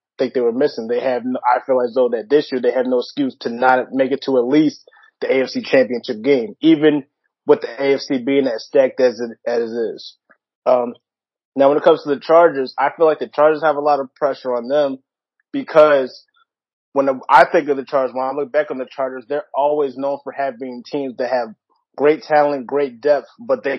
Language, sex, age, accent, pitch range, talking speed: English, male, 20-39, American, 125-145 Hz, 220 wpm